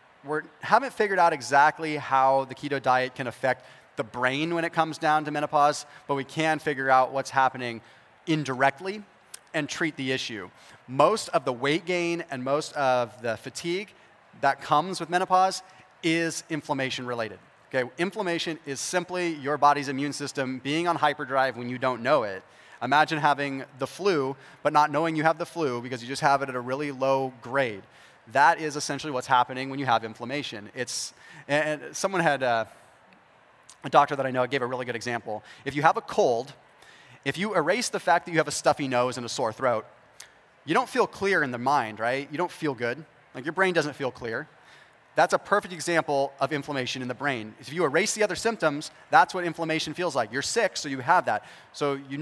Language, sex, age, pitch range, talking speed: English, male, 30-49, 130-160 Hz, 200 wpm